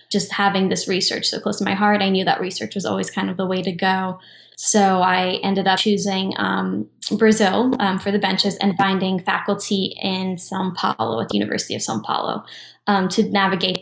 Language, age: English, 10-29